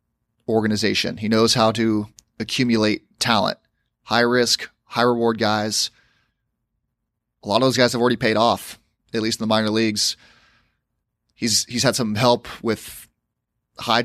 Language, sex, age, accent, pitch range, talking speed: English, male, 30-49, American, 105-120 Hz, 145 wpm